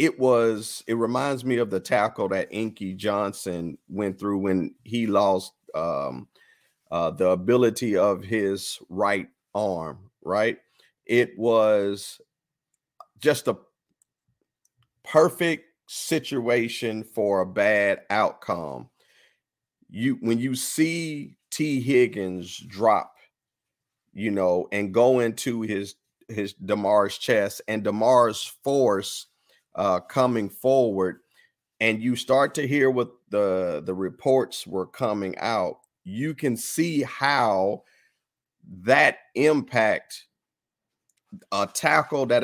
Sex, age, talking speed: male, 40-59, 110 wpm